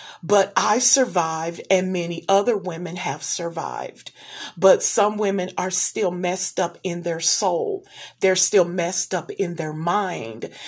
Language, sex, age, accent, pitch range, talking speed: English, female, 40-59, American, 175-205 Hz, 145 wpm